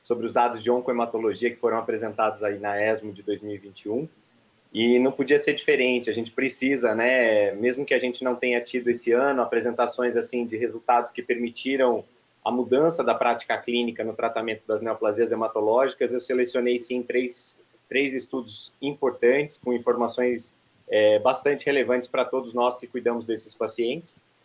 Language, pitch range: Portuguese, 120-150 Hz